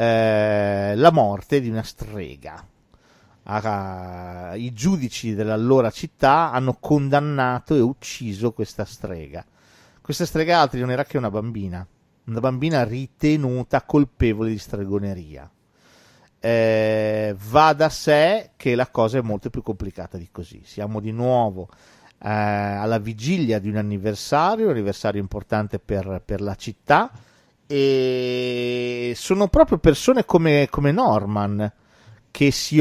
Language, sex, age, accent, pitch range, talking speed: Italian, male, 40-59, native, 105-140 Hz, 125 wpm